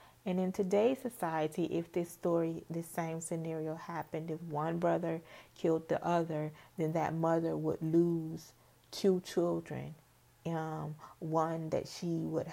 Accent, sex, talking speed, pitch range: American, female, 140 wpm, 145-165 Hz